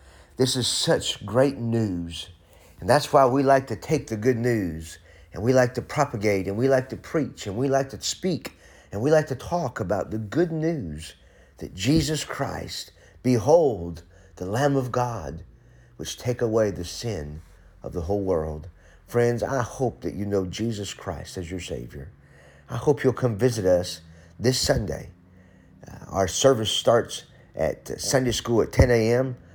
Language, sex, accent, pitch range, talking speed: English, male, American, 85-120 Hz, 170 wpm